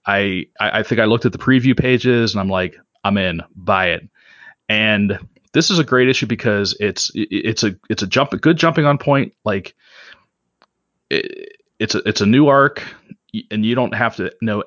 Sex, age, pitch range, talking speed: male, 30-49, 105-130 Hz, 190 wpm